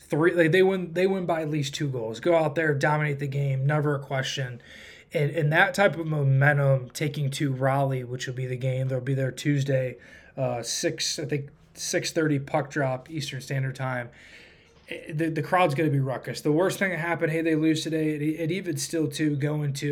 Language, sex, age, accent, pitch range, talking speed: English, male, 20-39, American, 130-160 Hz, 215 wpm